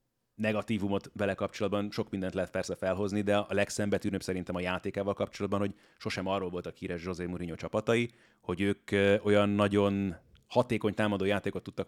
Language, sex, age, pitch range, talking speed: Hungarian, male, 30-49, 95-105 Hz, 160 wpm